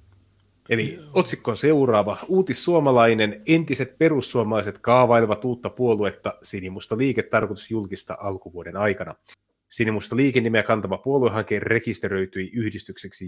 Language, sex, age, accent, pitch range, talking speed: Finnish, male, 30-49, native, 95-125 Hz, 100 wpm